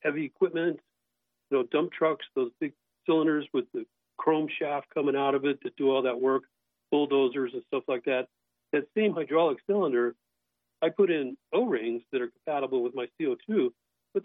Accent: American